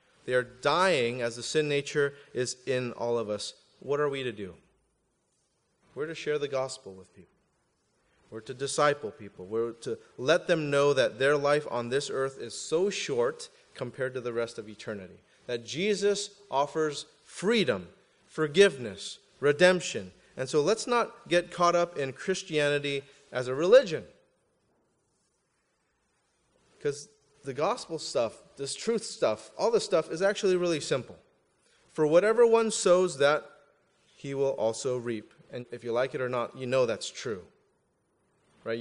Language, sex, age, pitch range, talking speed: English, male, 30-49, 130-180 Hz, 155 wpm